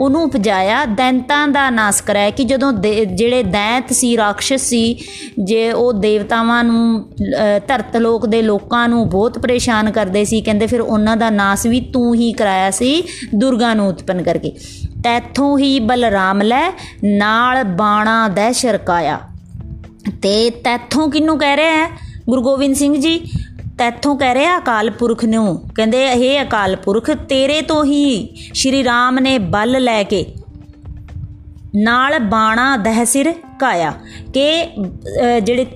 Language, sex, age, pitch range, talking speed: Punjabi, female, 20-39, 215-265 Hz, 130 wpm